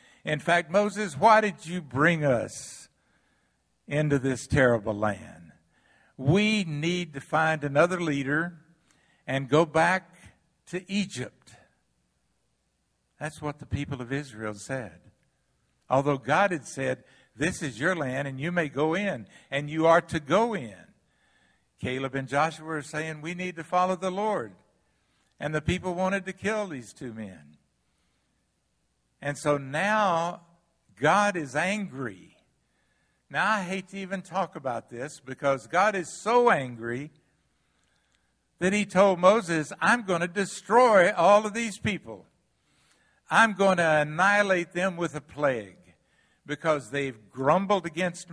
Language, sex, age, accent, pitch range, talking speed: English, male, 60-79, American, 130-180 Hz, 140 wpm